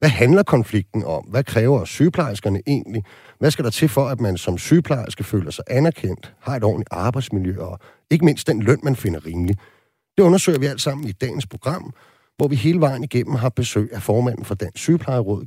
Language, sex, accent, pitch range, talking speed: Danish, male, native, 105-140 Hz, 200 wpm